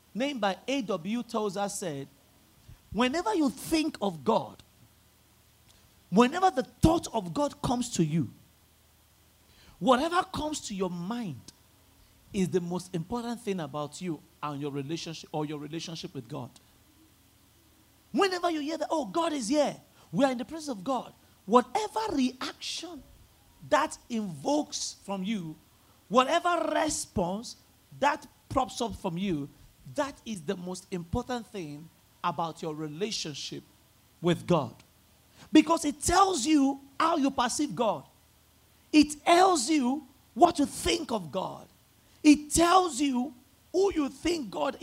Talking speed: 135 wpm